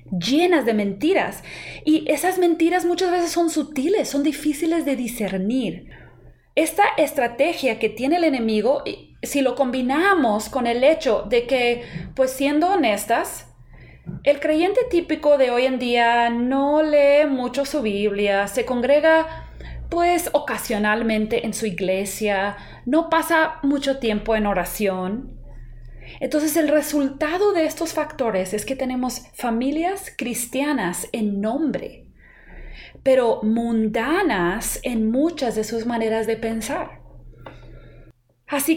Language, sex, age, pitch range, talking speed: Spanish, female, 30-49, 225-310 Hz, 120 wpm